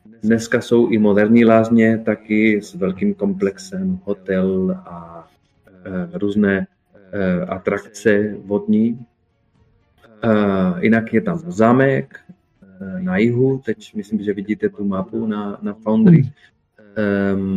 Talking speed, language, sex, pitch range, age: 95 wpm, Czech, male, 100-165 Hz, 30-49